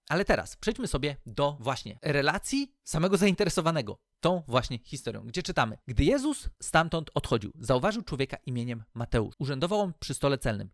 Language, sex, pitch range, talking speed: Polish, male, 120-180 Hz, 150 wpm